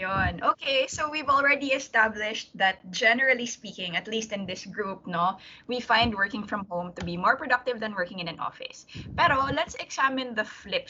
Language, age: Filipino, 20-39